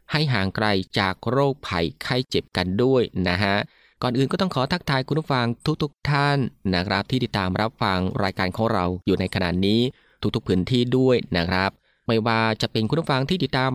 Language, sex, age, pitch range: Thai, male, 20-39, 100-130 Hz